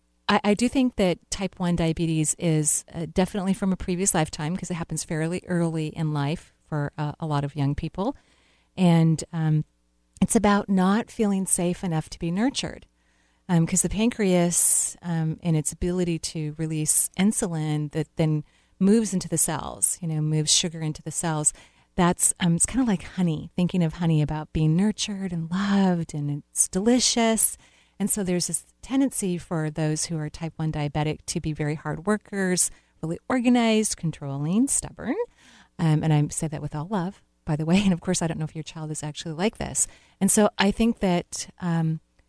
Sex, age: female, 40-59